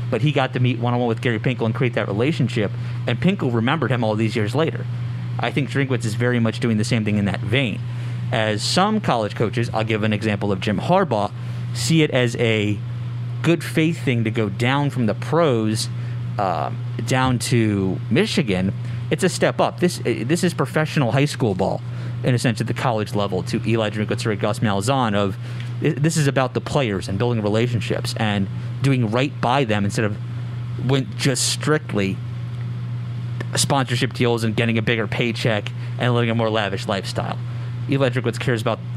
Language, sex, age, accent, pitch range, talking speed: English, male, 30-49, American, 110-125 Hz, 190 wpm